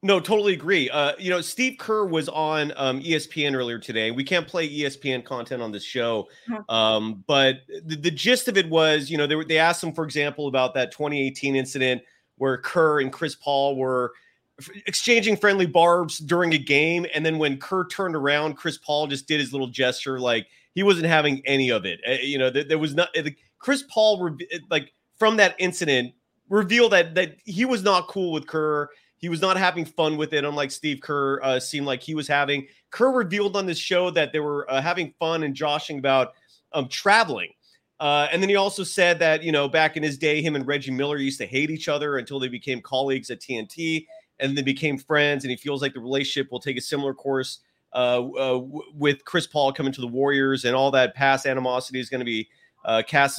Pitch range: 135-175 Hz